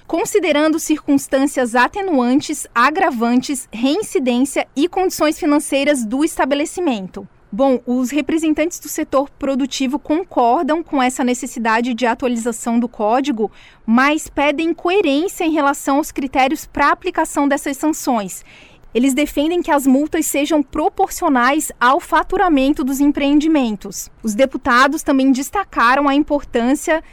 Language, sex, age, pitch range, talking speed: Portuguese, female, 20-39, 255-315 Hz, 115 wpm